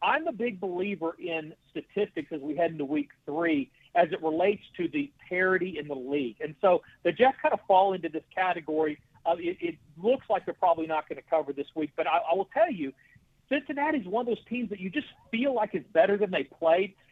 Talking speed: 230 wpm